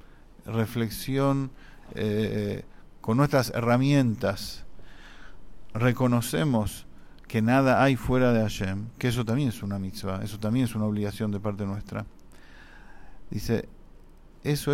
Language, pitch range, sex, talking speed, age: English, 110-135 Hz, male, 115 wpm, 50-69